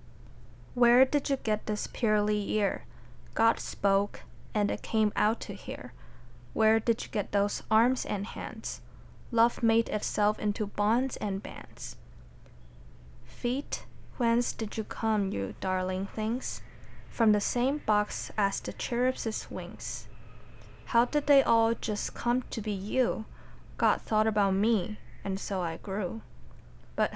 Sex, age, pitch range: female, 20-39, 185-225 Hz